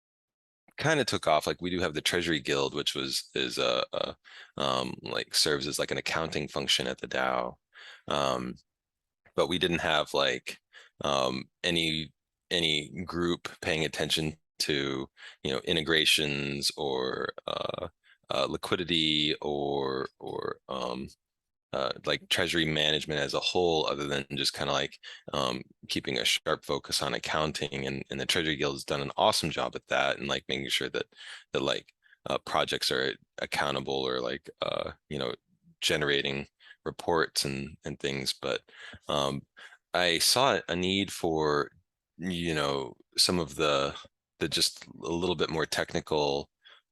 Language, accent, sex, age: Chinese, American, male, 20-39